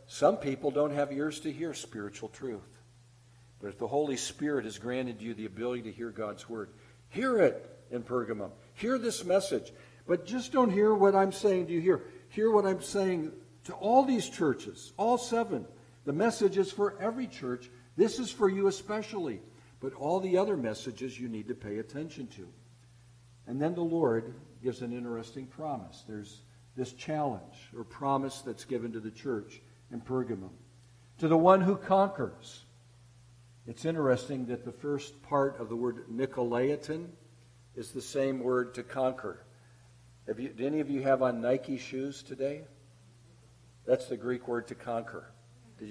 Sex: male